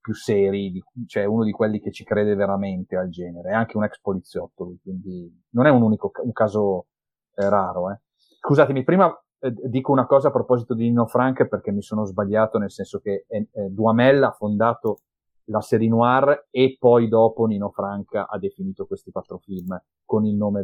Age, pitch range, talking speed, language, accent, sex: 40-59, 100-125 Hz, 185 wpm, Italian, native, male